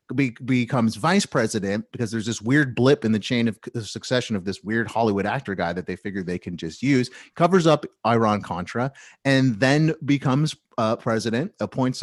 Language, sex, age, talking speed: English, male, 30-49, 190 wpm